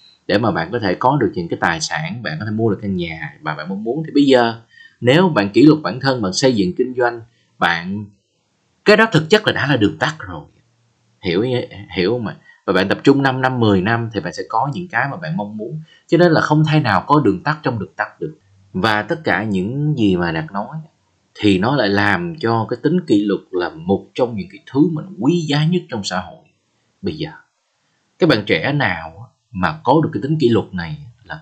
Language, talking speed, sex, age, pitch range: Vietnamese, 245 wpm, male, 20-39, 100-160 Hz